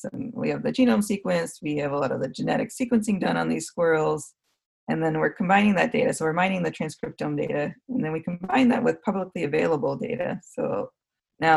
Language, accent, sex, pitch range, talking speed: English, American, female, 160-205 Hz, 220 wpm